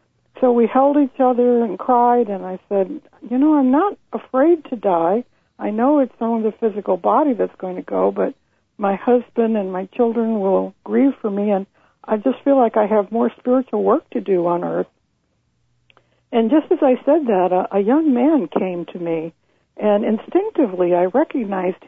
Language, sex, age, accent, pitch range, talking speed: English, female, 60-79, American, 190-255 Hz, 185 wpm